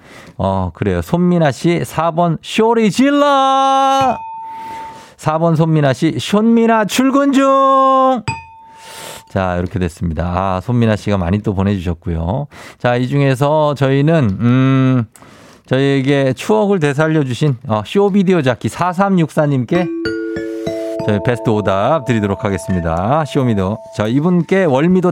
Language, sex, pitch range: Korean, male, 115-180 Hz